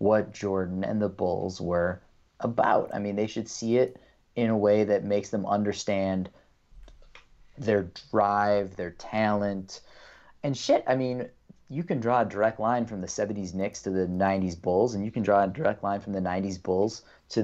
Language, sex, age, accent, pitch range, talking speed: English, male, 30-49, American, 95-110 Hz, 185 wpm